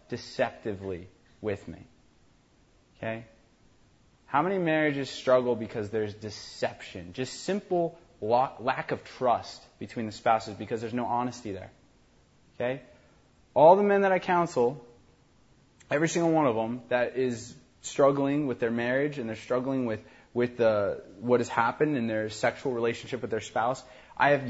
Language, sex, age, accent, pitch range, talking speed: English, male, 20-39, American, 110-140 Hz, 150 wpm